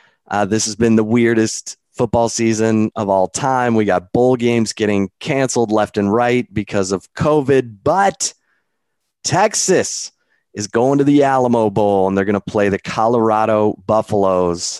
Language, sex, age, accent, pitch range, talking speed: English, male, 30-49, American, 100-120 Hz, 160 wpm